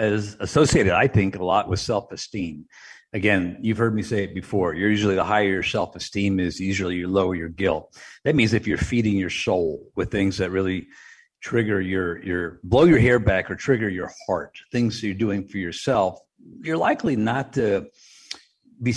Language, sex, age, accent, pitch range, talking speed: English, male, 50-69, American, 105-135 Hz, 190 wpm